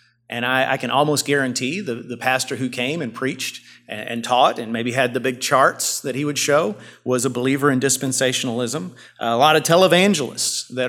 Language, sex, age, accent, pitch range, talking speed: English, male, 40-59, American, 125-150 Hz, 205 wpm